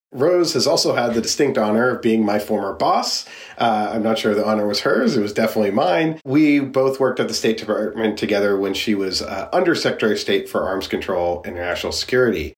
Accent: American